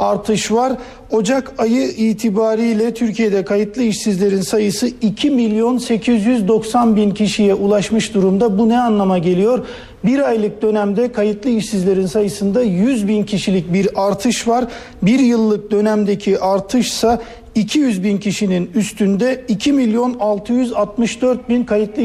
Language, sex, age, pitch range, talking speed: Turkish, male, 50-69, 200-235 Hz, 120 wpm